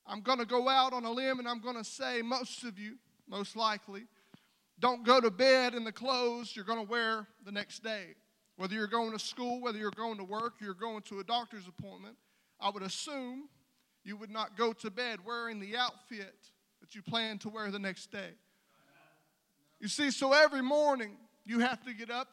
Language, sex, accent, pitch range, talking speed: English, male, American, 215-255 Hz, 210 wpm